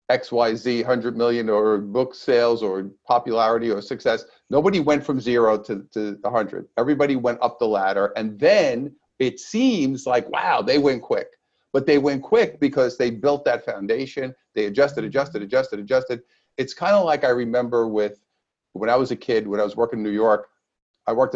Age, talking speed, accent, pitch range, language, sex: 50-69, 190 wpm, American, 110-130 Hz, English, male